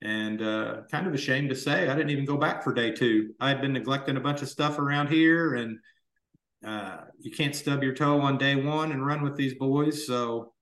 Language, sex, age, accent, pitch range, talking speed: English, male, 40-59, American, 125-150 Hz, 235 wpm